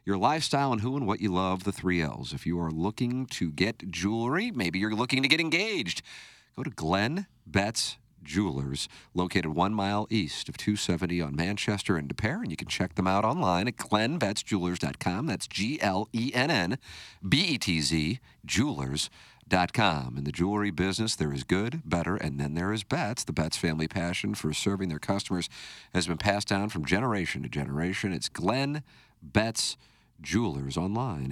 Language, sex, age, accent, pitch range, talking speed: English, male, 50-69, American, 85-110 Hz, 165 wpm